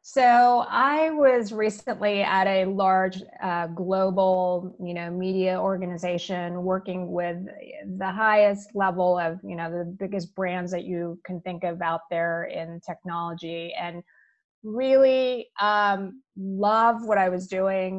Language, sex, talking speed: English, female, 135 wpm